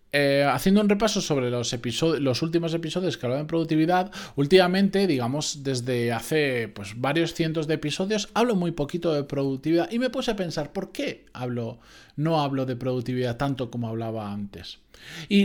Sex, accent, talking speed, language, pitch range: male, Spanish, 175 wpm, Spanish, 130-190 Hz